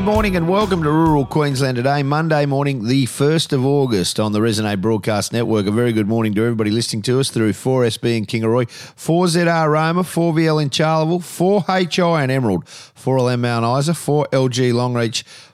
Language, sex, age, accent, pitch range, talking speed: English, male, 40-59, Australian, 105-135 Hz, 175 wpm